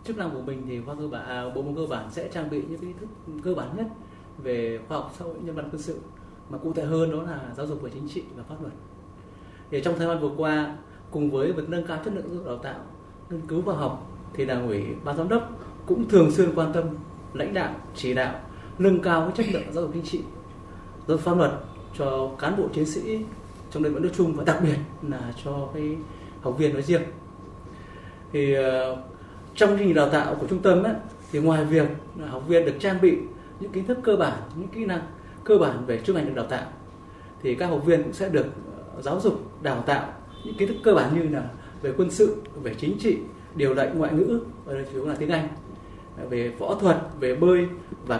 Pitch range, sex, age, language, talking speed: 130-175 Hz, male, 20-39, Vietnamese, 230 wpm